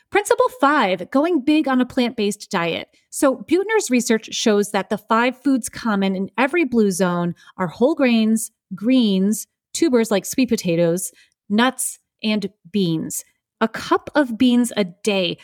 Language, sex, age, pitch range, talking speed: English, female, 30-49, 190-255 Hz, 150 wpm